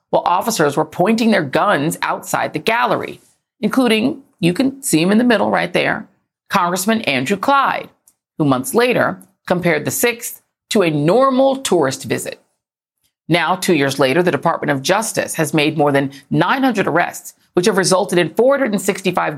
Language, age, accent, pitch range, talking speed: English, 40-59, American, 160-225 Hz, 160 wpm